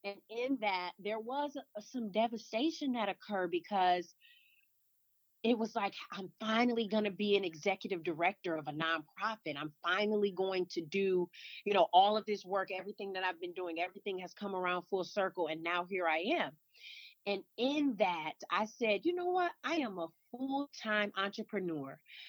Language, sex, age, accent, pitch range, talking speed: English, female, 30-49, American, 175-230 Hz, 170 wpm